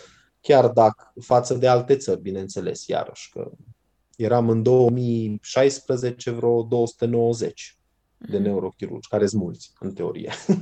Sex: male